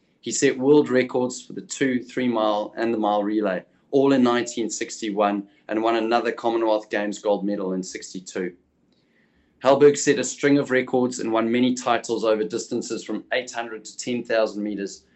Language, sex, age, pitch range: English, male, 20-39, 105-125 Hz